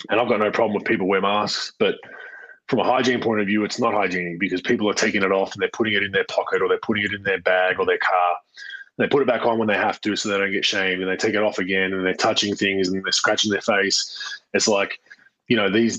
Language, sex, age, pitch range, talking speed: English, male, 20-39, 95-120 Hz, 285 wpm